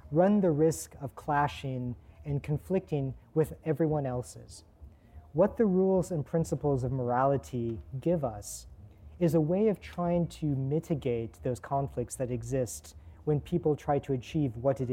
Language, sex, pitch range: English, male, 120-155 Hz